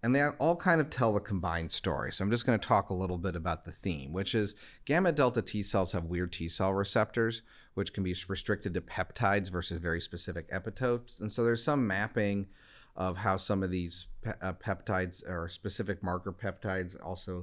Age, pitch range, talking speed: 40-59, 90-110 Hz, 205 wpm